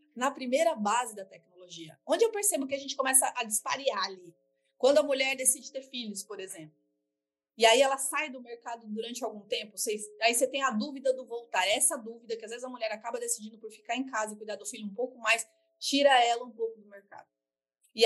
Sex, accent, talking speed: female, Brazilian, 225 wpm